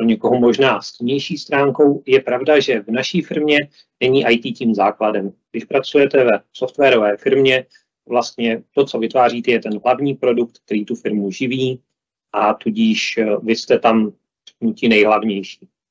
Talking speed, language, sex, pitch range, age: 150 wpm, Czech, male, 110-140 Hz, 30-49